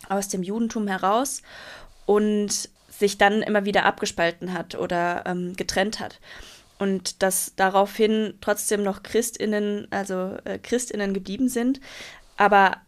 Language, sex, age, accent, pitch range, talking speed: German, female, 20-39, German, 180-210 Hz, 125 wpm